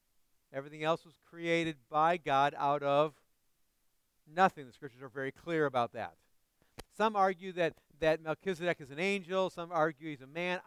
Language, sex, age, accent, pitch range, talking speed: English, male, 50-69, American, 150-190 Hz, 165 wpm